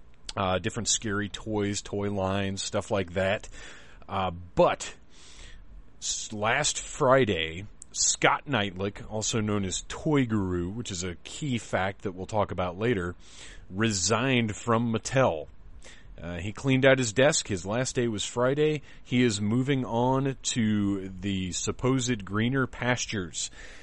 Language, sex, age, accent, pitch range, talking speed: English, male, 30-49, American, 95-115 Hz, 135 wpm